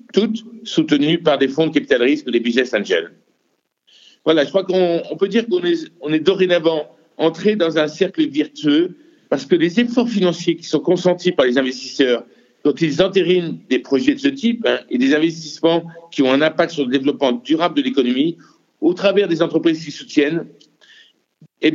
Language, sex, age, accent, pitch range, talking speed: French, male, 60-79, French, 150-205 Hz, 190 wpm